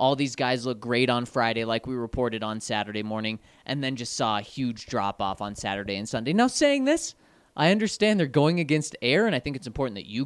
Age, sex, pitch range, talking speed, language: 20-39, male, 125-190 Hz, 235 wpm, English